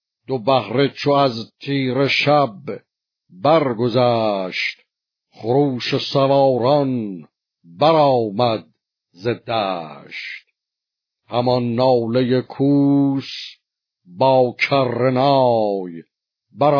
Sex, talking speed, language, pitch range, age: male, 60 wpm, Persian, 115-135 Hz, 60-79